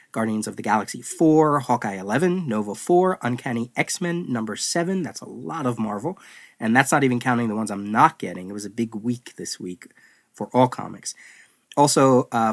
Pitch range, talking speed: 105-135 Hz, 190 wpm